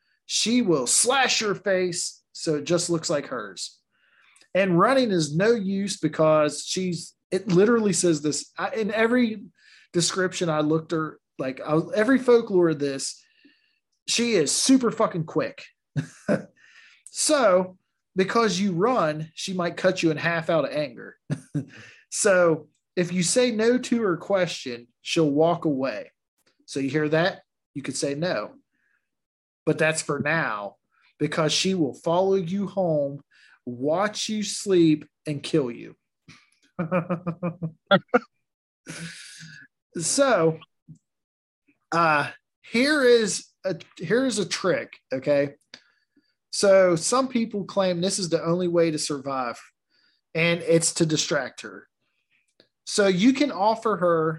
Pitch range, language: 160-220 Hz, English